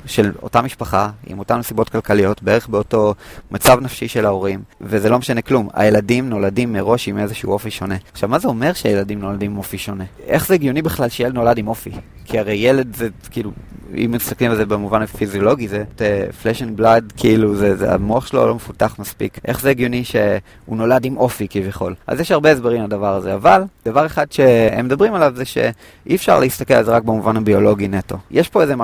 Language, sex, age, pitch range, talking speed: Hebrew, male, 30-49, 105-130 Hz, 150 wpm